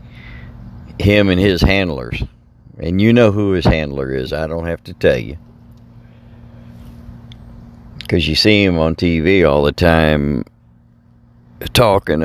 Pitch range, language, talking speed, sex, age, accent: 75-95 Hz, English, 130 wpm, male, 60-79, American